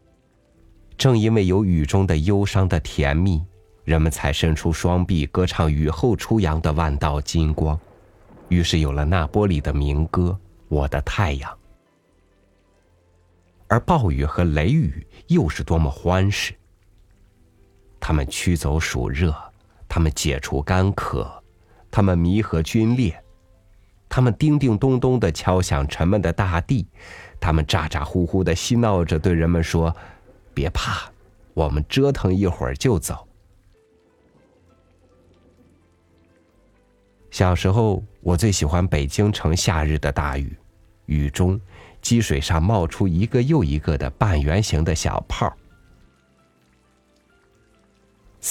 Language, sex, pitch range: Chinese, male, 80-100 Hz